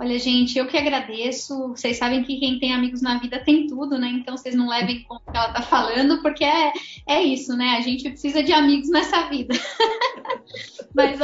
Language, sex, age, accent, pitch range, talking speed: Portuguese, female, 10-29, Brazilian, 240-275 Hz, 210 wpm